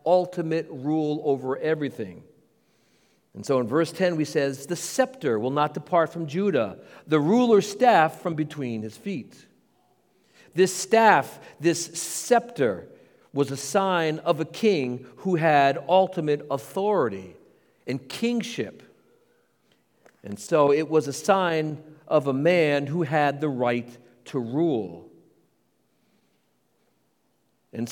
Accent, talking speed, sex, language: American, 125 wpm, male, English